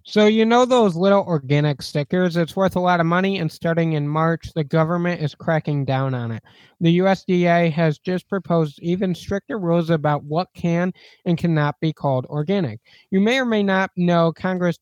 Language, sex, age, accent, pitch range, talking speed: English, male, 20-39, American, 150-185 Hz, 190 wpm